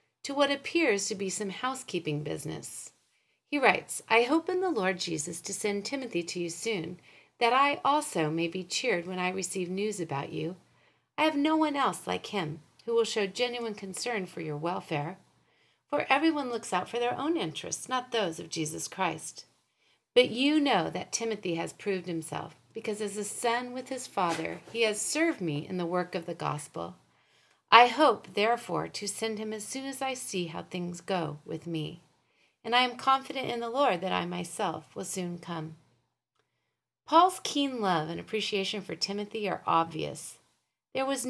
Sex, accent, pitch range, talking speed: female, American, 175-250 Hz, 185 wpm